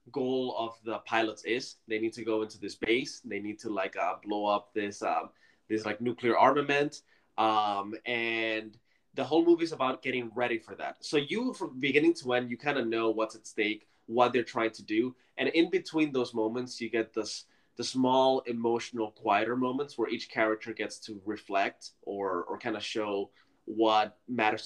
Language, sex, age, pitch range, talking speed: English, male, 20-39, 110-130 Hz, 195 wpm